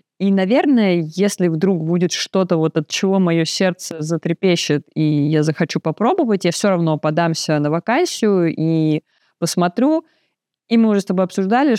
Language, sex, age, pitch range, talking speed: Russian, female, 20-39, 155-195 Hz, 150 wpm